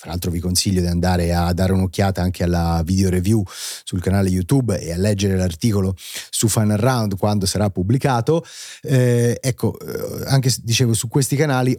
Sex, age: male, 30-49